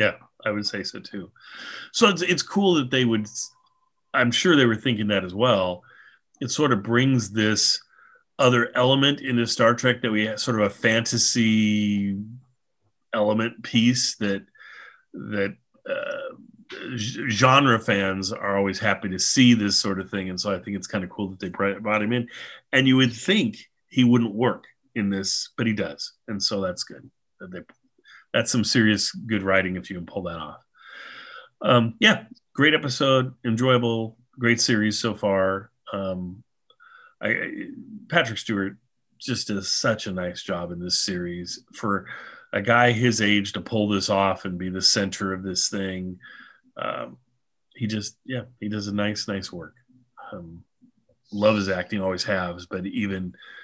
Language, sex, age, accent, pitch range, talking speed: English, male, 30-49, American, 100-125 Hz, 170 wpm